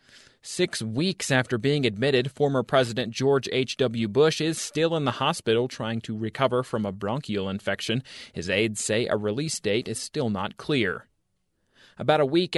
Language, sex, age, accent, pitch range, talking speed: English, male, 30-49, American, 115-145 Hz, 165 wpm